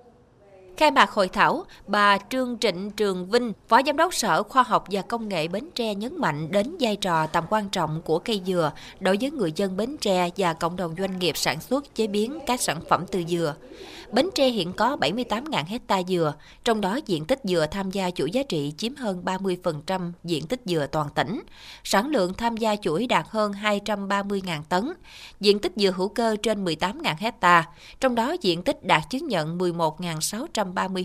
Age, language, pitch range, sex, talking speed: 20-39, Vietnamese, 175-230 Hz, female, 195 wpm